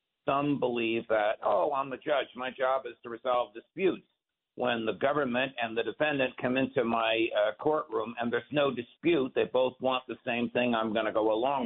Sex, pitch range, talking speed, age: male, 115-150 Hz, 200 wpm, 60-79